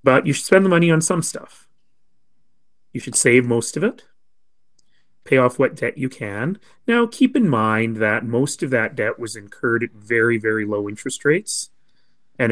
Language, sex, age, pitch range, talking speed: English, male, 30-49, 105-130 Hz, 185 wpm